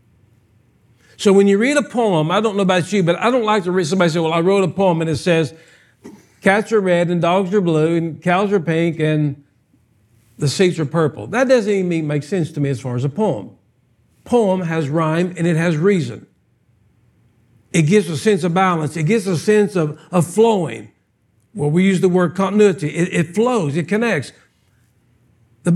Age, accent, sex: 60-79, American, male